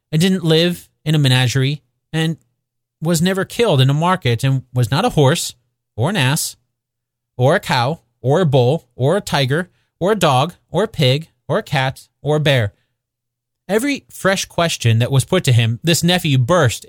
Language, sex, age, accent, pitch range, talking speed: English, male, 30-49, American, 125-175 Hz, 190 wpm